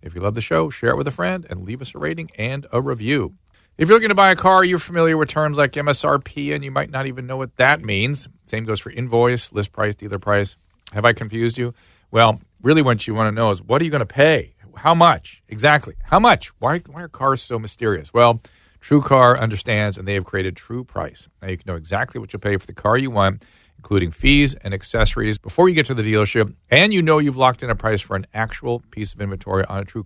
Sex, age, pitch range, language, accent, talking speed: male, 40-59, 100-135 Hz, English, American, 255 wpm